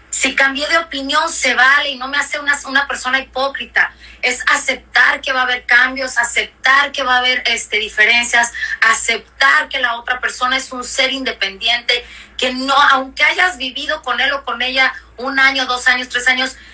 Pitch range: 230-280 Hz